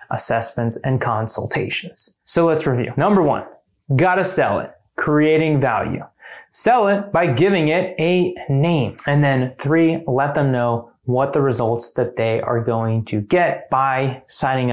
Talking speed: 150 wpm